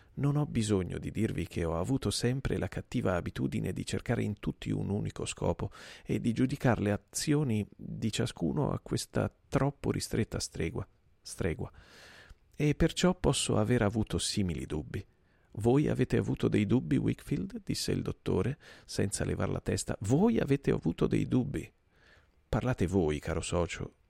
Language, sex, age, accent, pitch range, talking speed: Italian, male, 40-59, native, 95-135 Hz, 150 wpm